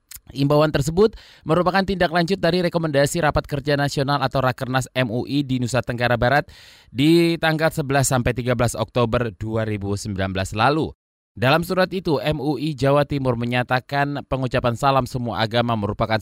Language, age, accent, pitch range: Indonesian, 20-39, native, 120-160 Hz